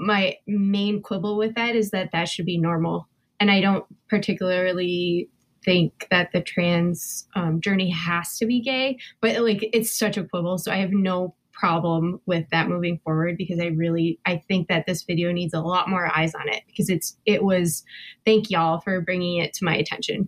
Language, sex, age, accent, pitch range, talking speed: English, female, 20-39, American, 175-210 Hz, 200 wpm